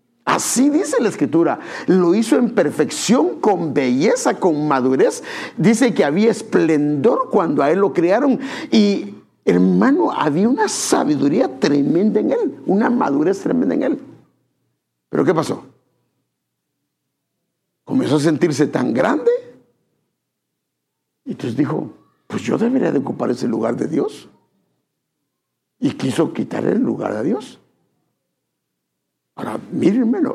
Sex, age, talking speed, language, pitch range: male, 60-79, 125 wpm, English, 160-245 Hz